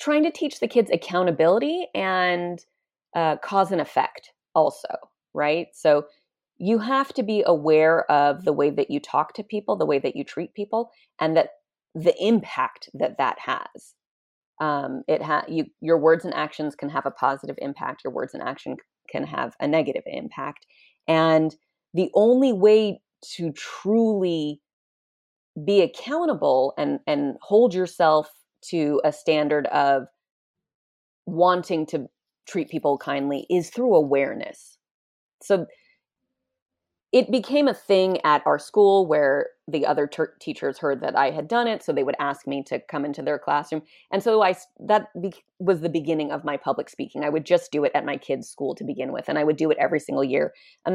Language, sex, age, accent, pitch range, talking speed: English, female, 30-49, American, 145-210 Hz, 170 wpm